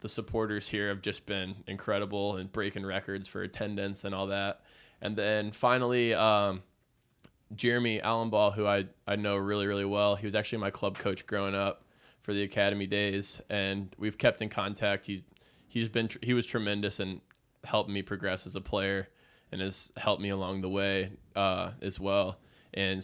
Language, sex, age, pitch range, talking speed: English, male, 20-39, 100-110 Hz, 180 wpm